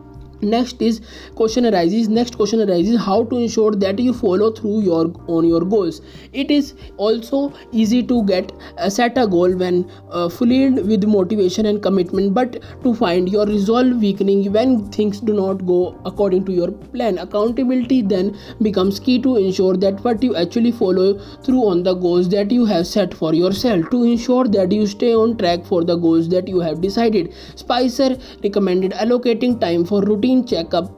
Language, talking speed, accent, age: English, 180 wpm, Indian, 20-39